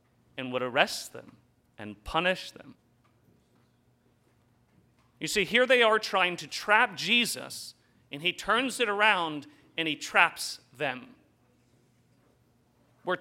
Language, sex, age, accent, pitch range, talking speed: English, male, 40-59, American, 155-215 Hz, 120 wpm